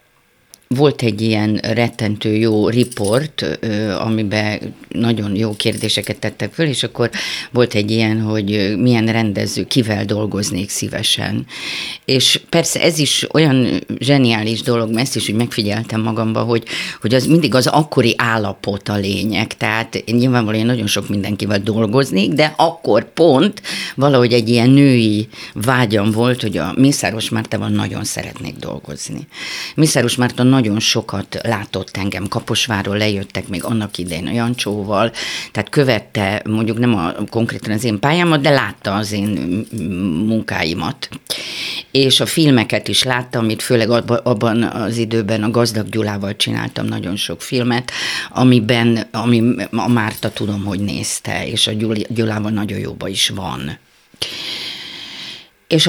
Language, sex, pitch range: Hungarian, female, 105-125 Hz